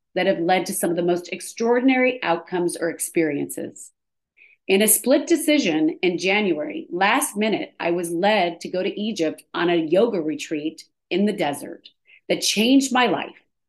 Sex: female